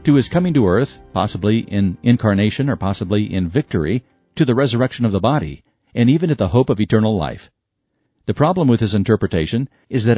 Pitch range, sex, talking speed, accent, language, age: 100-130 Hz, male, 195 wpm, American, English, 50-69